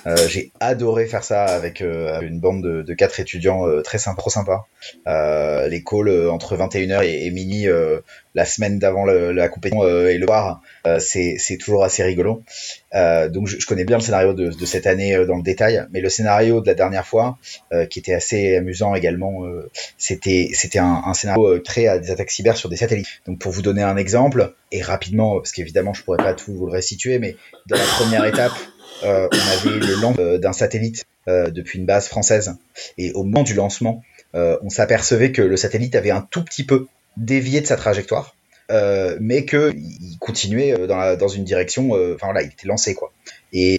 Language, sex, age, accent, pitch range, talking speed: French, male, 30-49, French, 90-115 Hz, 220 wpm